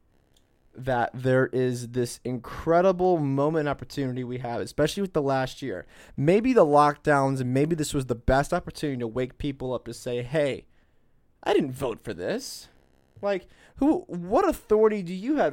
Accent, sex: American, male